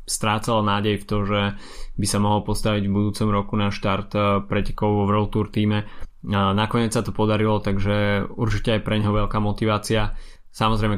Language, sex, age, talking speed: Slovak, male, 20-39, 170 wpm